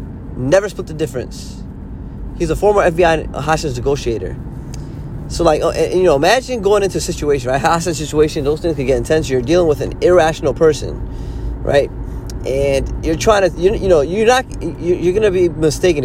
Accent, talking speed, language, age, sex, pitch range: American, 180 wpm, English, 20-39, male, 120-165 Hz